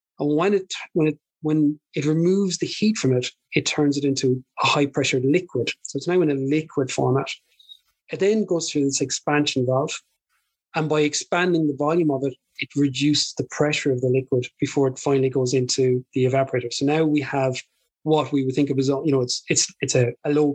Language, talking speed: English, 215 wpm